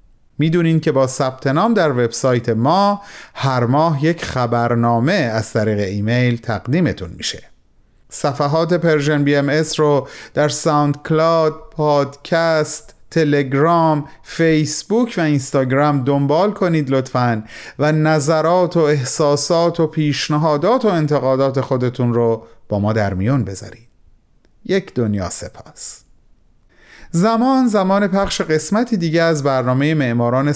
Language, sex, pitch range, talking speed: Persian, male, 120-170 Hz, 115 wpm